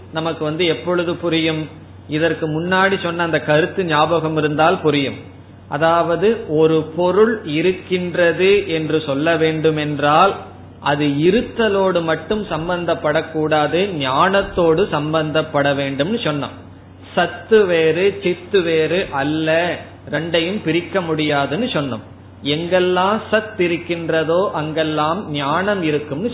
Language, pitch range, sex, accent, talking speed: Tamil, 145-185 Hz, male, native, 95 wpm